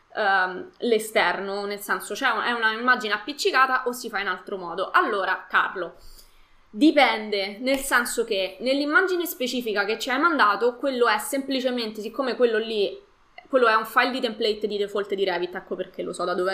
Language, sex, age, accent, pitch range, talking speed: Italian, female, 20-39, native, 195-245 Hz, 170 wpm